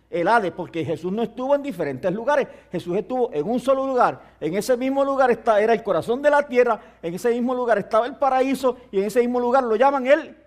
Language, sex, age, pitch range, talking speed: English, male, 50-69, 155-225 Hz, 230 wpm